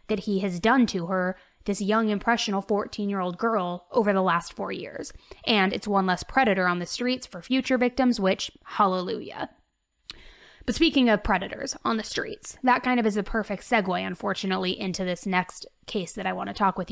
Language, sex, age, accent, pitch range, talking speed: English, female, 20-39, American, 195-255 Hz, 200 wpm